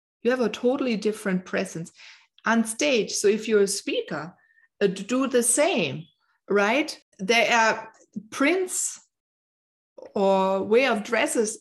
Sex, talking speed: female, 125 wpm